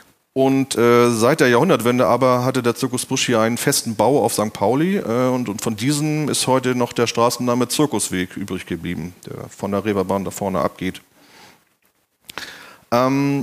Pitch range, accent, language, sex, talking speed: 110-135 Hz, German, German, male, 170 wpm